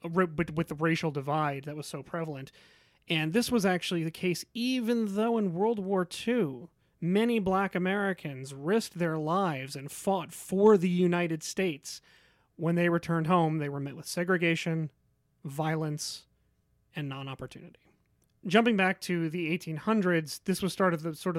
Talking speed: 150 wpm